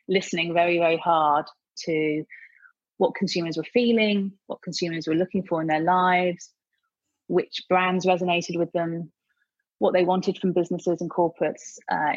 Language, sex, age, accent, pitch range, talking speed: English, female, 30-49, British, 170-195 Hz, 150 wpm